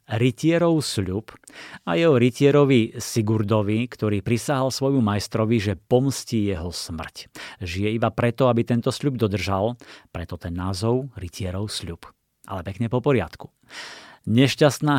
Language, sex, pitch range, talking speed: Slovak, male, 105-130 Hz, 125 wpm